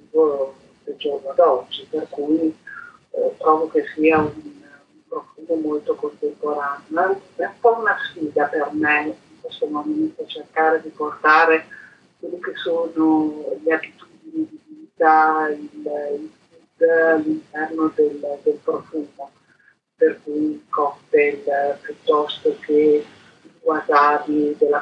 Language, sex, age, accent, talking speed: Italian, female, 40-59, native, 115 wpm